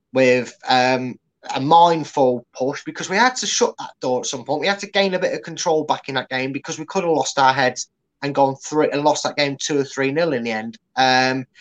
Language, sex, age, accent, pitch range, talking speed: English, male, 20-39, British, 130-160 Hz, 260 wpm